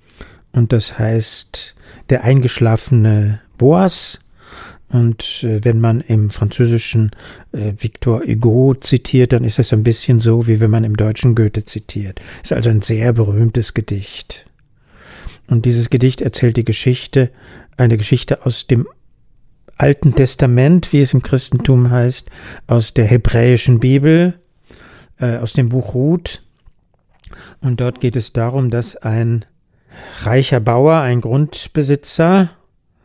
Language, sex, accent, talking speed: German, male, German, 125 wpm